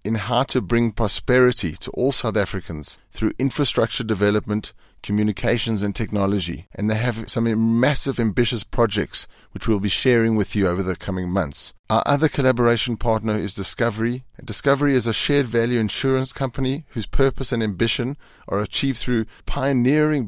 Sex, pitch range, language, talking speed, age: male, 100-125 Hz, English, 155 wpm, 30-49